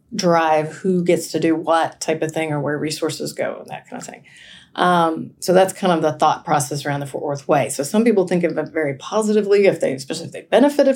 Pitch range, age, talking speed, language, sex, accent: 160-185 Hz, 30-49, 245 wpm, English, female, American